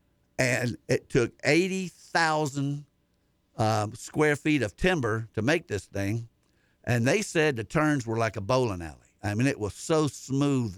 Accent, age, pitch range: American, 50-69, 105-145 Hz